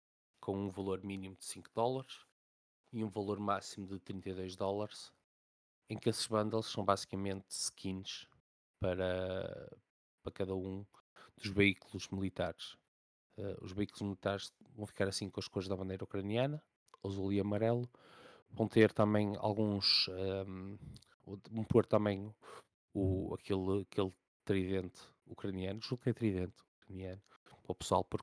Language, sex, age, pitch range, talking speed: Portuguese, male, 20-39, 95-110 Hz, 140 wpm